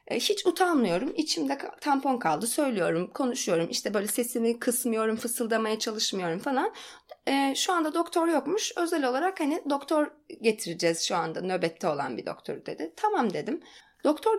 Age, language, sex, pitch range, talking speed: 30-49, Turkish, female, 235-330 Hz, 140 wpm